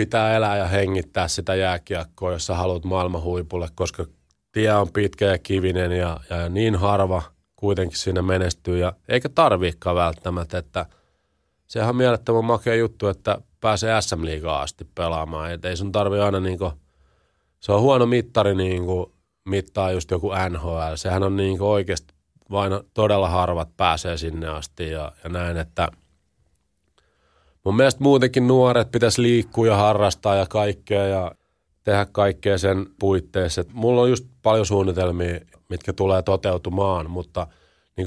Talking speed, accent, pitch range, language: 145 wpm, native, 85-100 Hz, Finnish